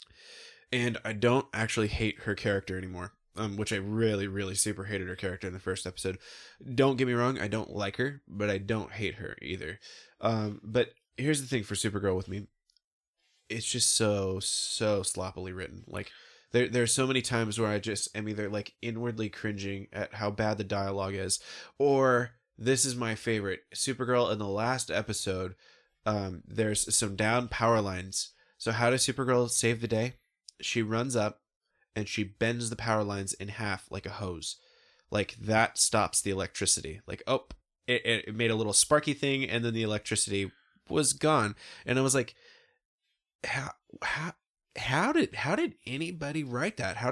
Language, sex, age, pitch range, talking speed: English, male, 20-39, 105-135 Hz, 180 wpm